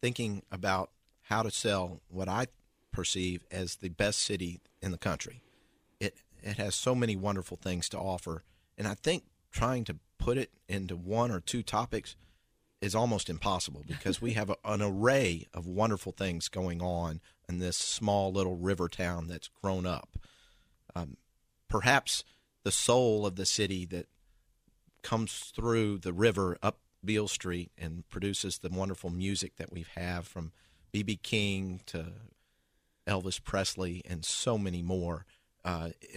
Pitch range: 90-110 Hz